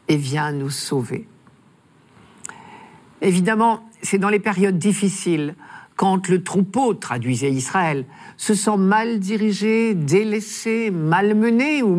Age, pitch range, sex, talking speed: 50-69, 145-210 Hz, male, 115 wpm